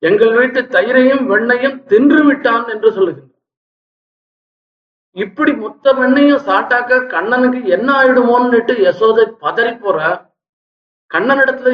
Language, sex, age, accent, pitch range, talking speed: Tamil, male, 50-69, native, 195-255 Hz, 90 wpm